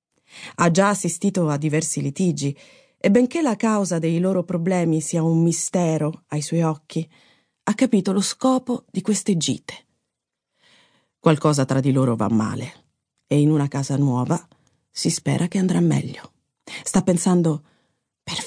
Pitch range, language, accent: 160-220 Hz, Italian, native